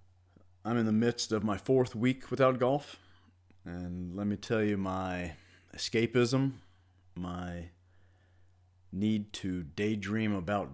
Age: 30-49